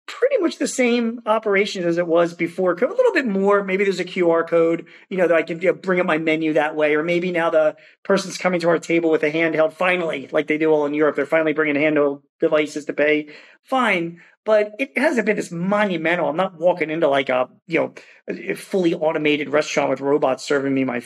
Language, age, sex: English, 40-59, male